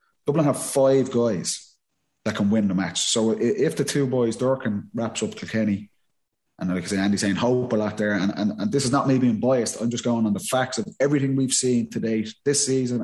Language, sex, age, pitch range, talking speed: English, male, 20-39, 105-130 Hz, 235 wpm